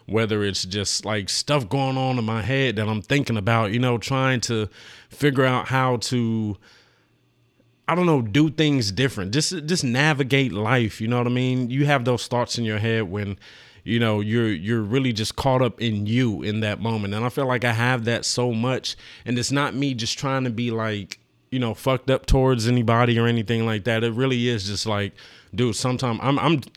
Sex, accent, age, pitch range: male, American, 30-49, 110-130 Hz